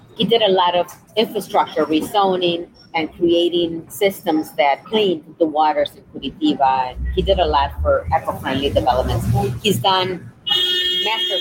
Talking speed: 140 wpm